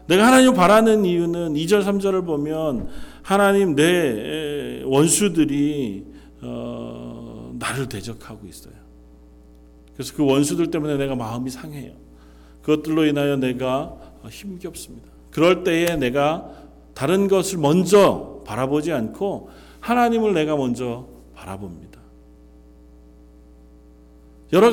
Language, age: Korean, 40-59